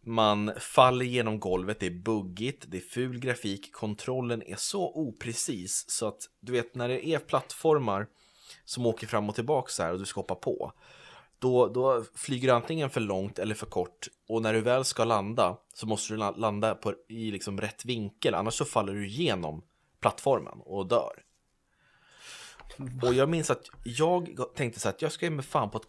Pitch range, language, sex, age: 100-125 Hz, Swedish, male, 20-39